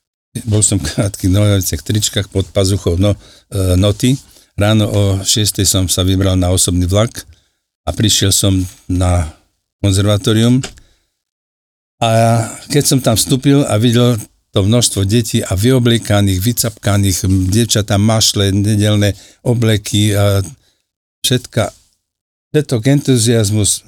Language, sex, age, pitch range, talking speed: Slovak, male, 60-79, 90-115 Hz, 115 wpm